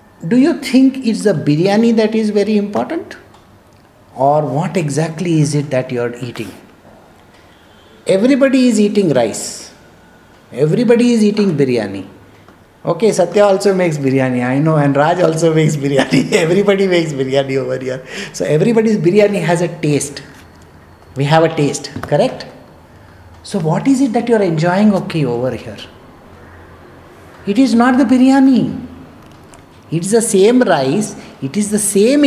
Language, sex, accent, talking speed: English, male, Indian, 145 wpm